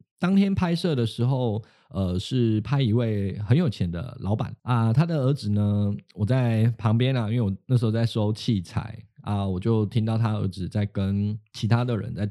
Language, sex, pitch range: Chinese, male, 105-135 Hz